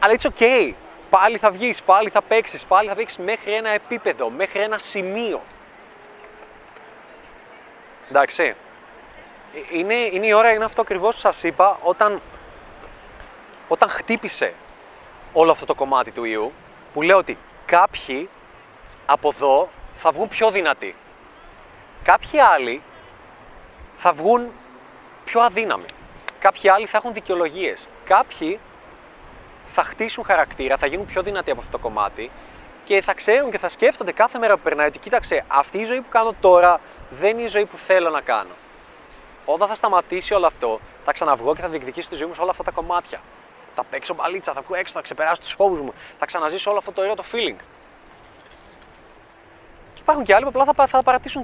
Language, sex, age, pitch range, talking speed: Greek, male, 30-49, 180-225 Hz, 165 wpm